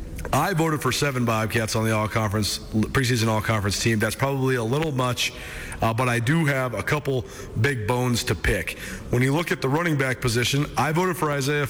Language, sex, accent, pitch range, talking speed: English, male, American, 110-135 Hz, 210 wpm